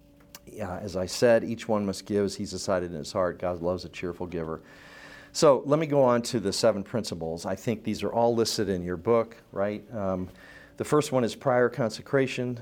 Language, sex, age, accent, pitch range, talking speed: English, male, 40-59, American, 100-125 Hz, 215 wpm